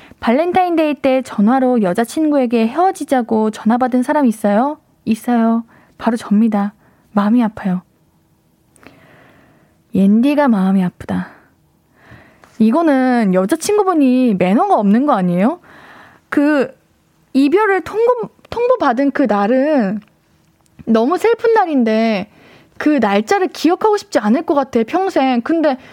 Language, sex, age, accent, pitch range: Korean, female, 20-39, native, 225-320 Hz